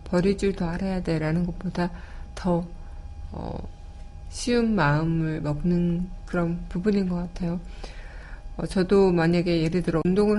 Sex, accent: female, native